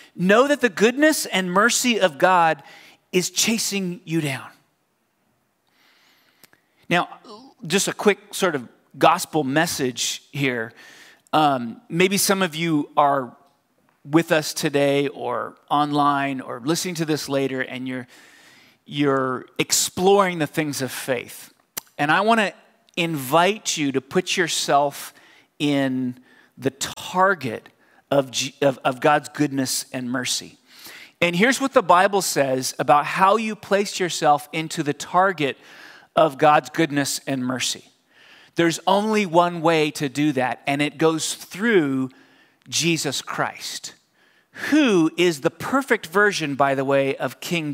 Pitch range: 140-185 Hz